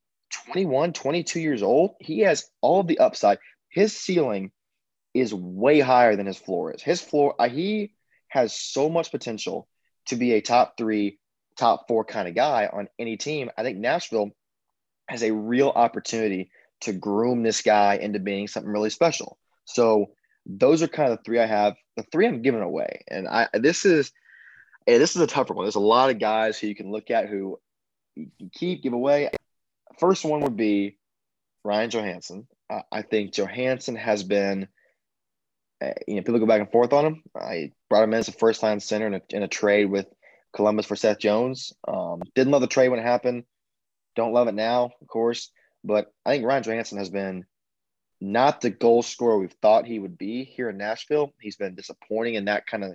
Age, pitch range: 20-39, 105-135 Hz